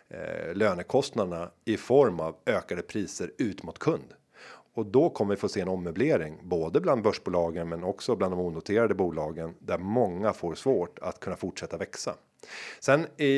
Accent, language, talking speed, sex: native, Swedish, 160 wpm, male